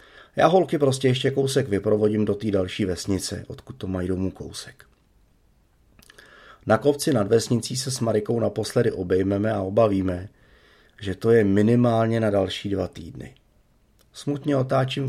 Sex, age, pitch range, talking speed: male, 40-59, 100-120 Hz, 145 wpm